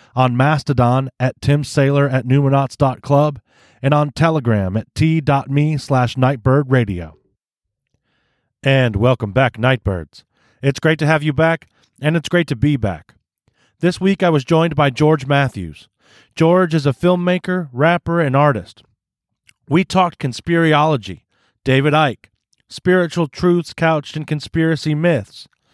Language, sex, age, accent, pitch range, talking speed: English, male, 30-49, American, 125-160 Hz, 130 wpm